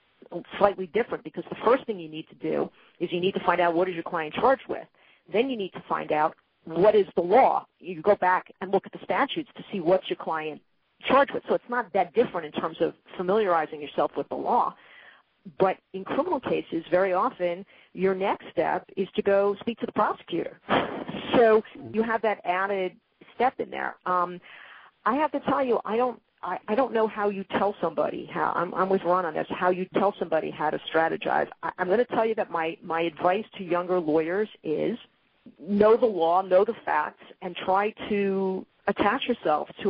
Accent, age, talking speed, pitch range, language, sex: American, 40-59, 210 wpm, 175-225 Hz, English, female